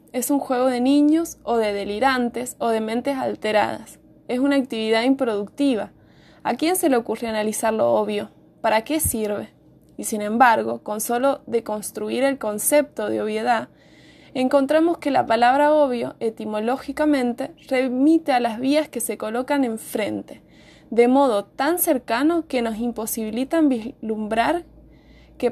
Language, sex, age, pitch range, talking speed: Spanish, female, 20-39, 215-285 Hz, 140 wpm